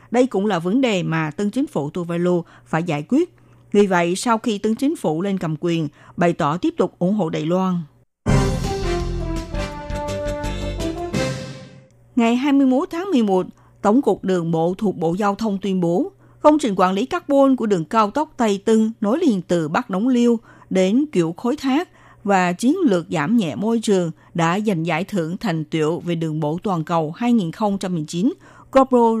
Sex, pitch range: female, 170-235 Hz